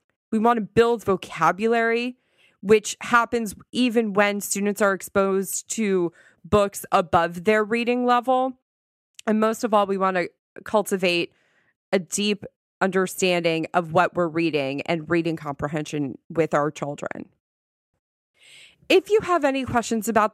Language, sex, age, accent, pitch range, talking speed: English, female, 30-49, American, 180-230 Hz, 135 wpm